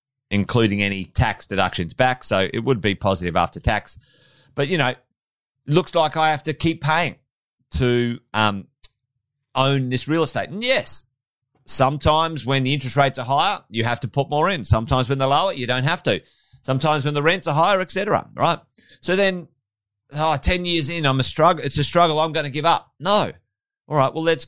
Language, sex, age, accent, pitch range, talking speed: English, male, 30-49, Australian, 130-175 Hz, 205 wpm